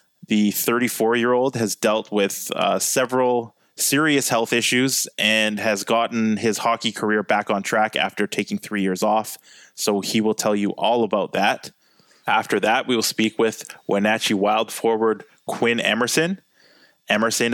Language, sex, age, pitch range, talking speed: English, male, 20-39, 105-120 Hz, 150 wpm